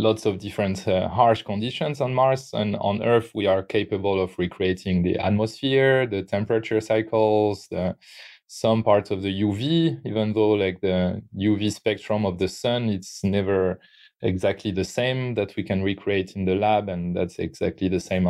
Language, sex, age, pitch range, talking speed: English, male, 20-39, 95-110 Hz, 175 wpm